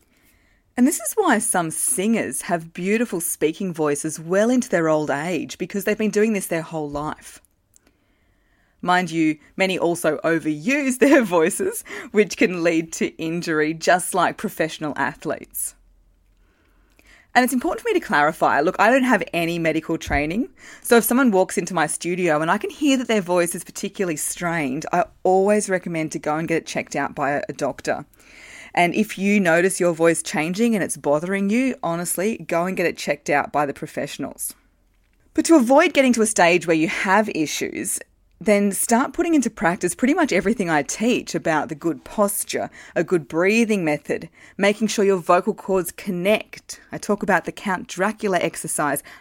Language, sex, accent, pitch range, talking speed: English, female, Australian, 165-215 Hz, 180 wpm